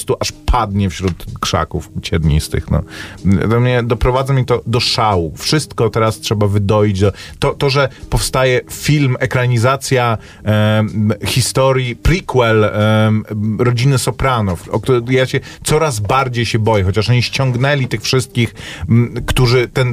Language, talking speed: Polish, 135 wpm